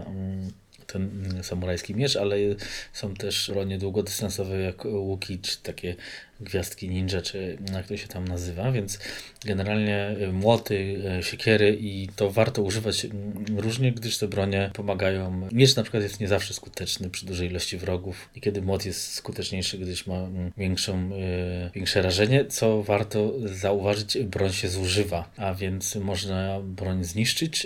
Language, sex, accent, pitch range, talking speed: Polish, male, native, 95-105 Hz, 140 wpm